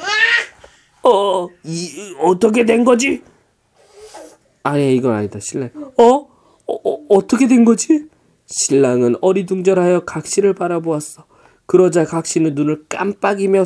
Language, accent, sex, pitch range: Korean, native, male, 155-220 Hz